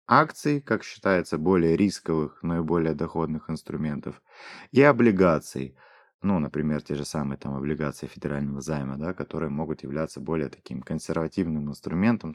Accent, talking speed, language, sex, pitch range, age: native, 140 wpm, Russian, male, 75-100 Hz, 20-39